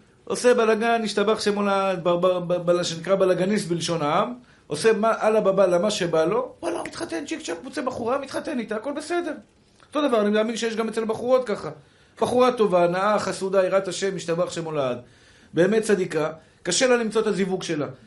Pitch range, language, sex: 170-220 Hz, Hebrew, male